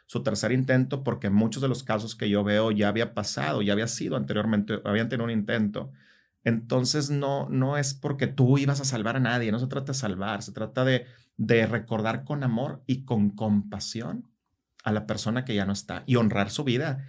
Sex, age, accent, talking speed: male, 40-59, Mexican, 205 wpm